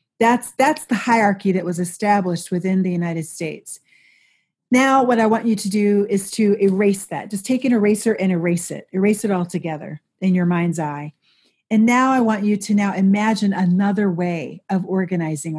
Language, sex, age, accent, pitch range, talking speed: English, female, 40-59, American, 175-210 Hz, 190 wpm